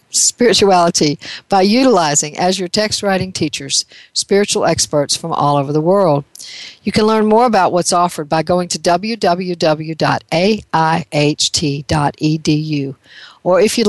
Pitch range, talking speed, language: 155-205 Hz, 125 wpm, English